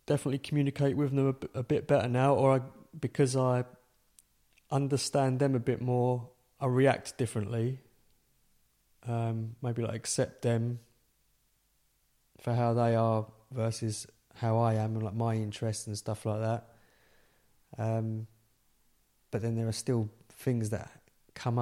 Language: English